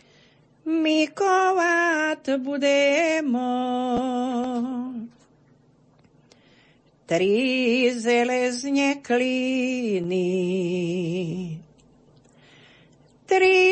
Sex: female